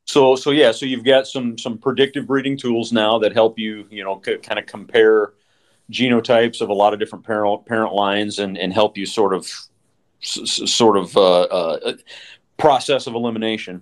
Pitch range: 95-115 Hz